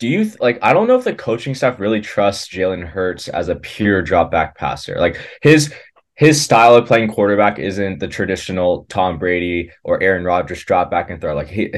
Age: 20-39